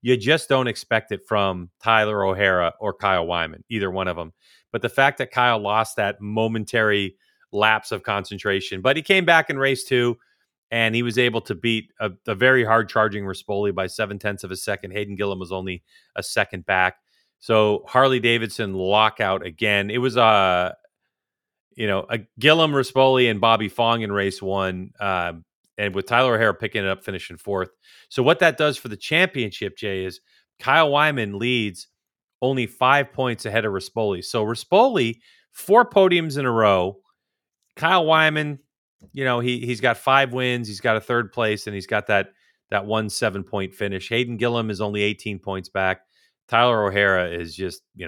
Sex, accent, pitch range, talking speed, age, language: male, American, 100-125 Hz, 185 wpm, 40-59, English